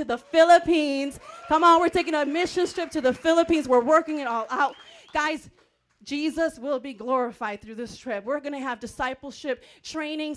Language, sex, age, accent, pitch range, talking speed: English, female, 30-49, American, 250-310 Hz, 175 wpm